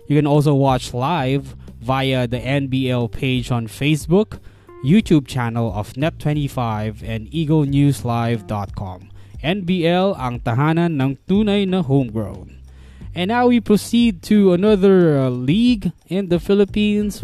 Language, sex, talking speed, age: English, male, 120 wpm, 20-39